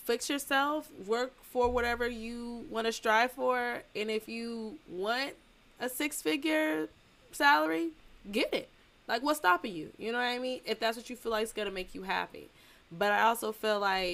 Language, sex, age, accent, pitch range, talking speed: English, female, 20-39, American, 200-245 Hz, 190 wpm